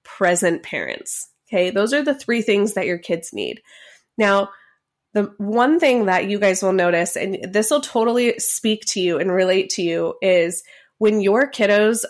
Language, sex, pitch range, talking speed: English, female, 190-255 Hz, 180 wpm